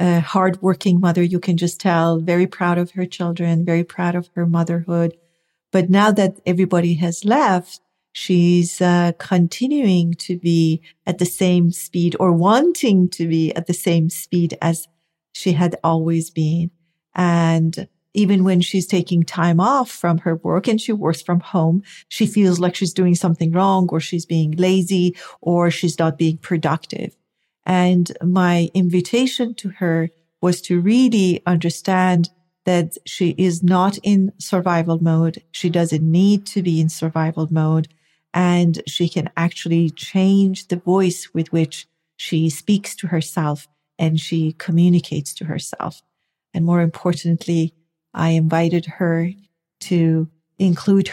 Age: 50-69